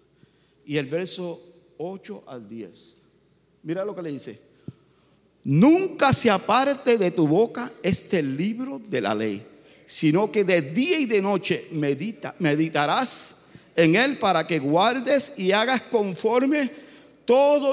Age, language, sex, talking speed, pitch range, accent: 50-69, English, male, 130 wpm, 165-275 Hz, Venezuelan